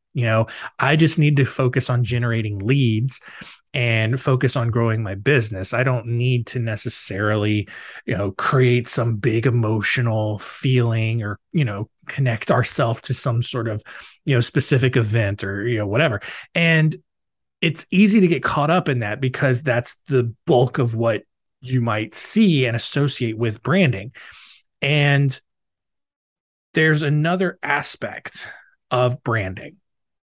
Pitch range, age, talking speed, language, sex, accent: 115-140 Hz, 20-39, 145 wpm, English, male, American